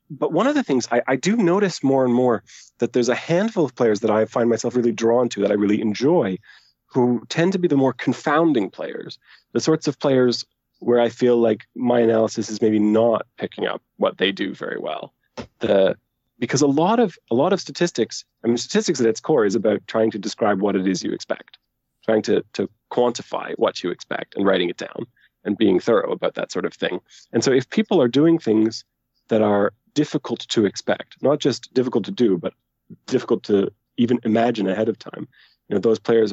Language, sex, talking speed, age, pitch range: English, male, 215 wpm, 30-49, 110-130 Hz